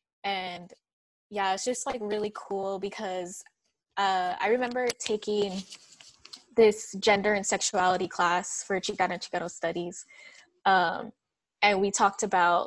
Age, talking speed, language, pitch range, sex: 10-29, 130 wpm, English, 185-220 Hz, female